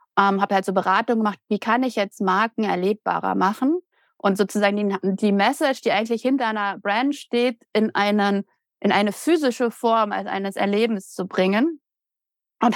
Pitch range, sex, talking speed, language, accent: 215-270 Hz, female, 170 wpm, German, German